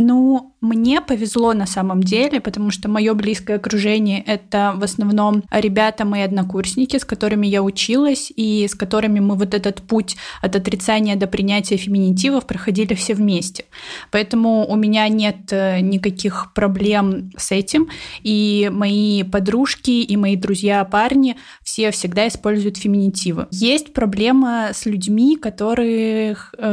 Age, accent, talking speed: 20-39, native, 135 wpm